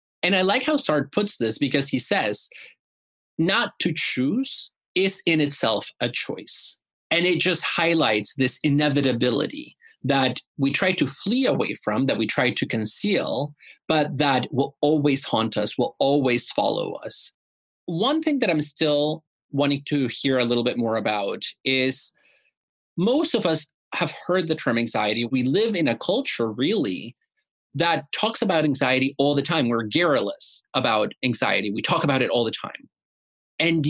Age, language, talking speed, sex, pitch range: 30-49, English, 165 wpm, male, 125-175 Hz